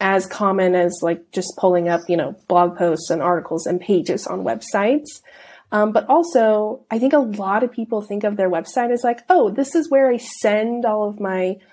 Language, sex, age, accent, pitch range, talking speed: English, female, 30-49, American, 190-245 Hz, 210 wpm